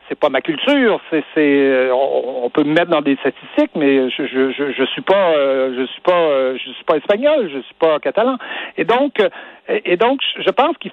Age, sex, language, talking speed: 60-79, male, French, 205 wpm